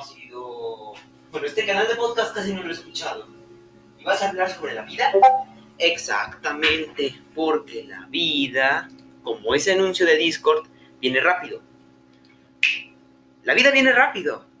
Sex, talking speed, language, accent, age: male, 135 wpm, Spanish, Mexican, 30-49